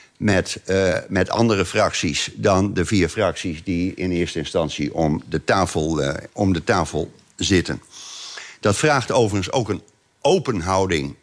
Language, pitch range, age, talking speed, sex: Dutch, 95-125 Hz, 60-79, 145 wpm, male